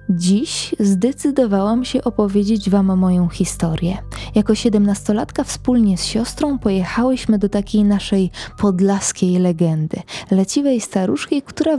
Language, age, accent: Polish, 20-39, native